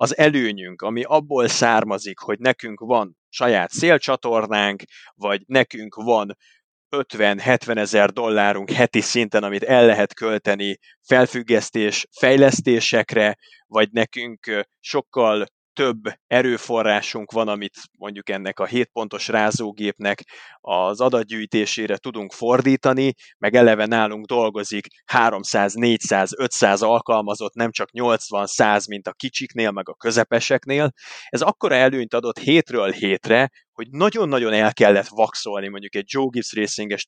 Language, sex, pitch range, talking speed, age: Hungarian, male, 105-120 Hz, 120 wpm, 30-49